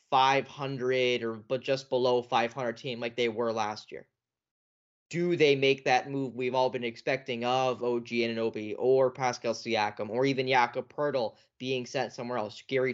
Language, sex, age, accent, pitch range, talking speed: English, male, 10-29, American, 125-145 Hz, 175 wpm